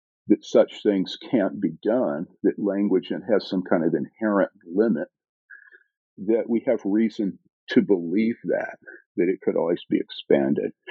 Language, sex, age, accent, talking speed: English, male, 50-69, American, 150 wpm